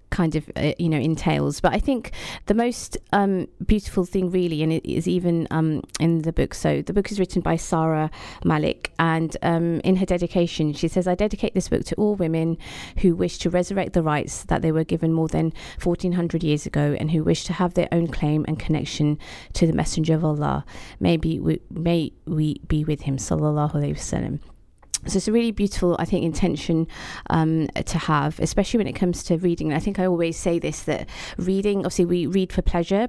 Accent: British